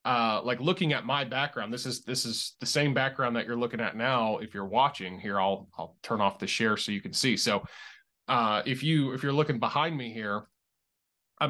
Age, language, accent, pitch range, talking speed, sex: 20-39, English, American, 115-150 Hz, 225 wpm, male